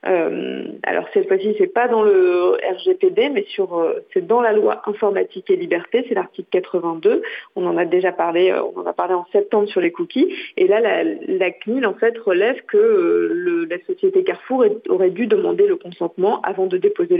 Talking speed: 190 wpm